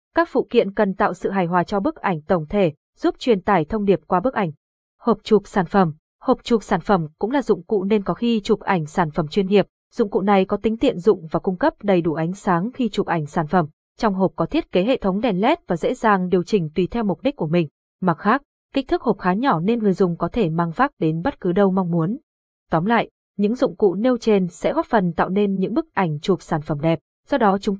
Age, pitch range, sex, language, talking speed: 20-39, 185-230 Hz, female, Vietnamese, 265 wpm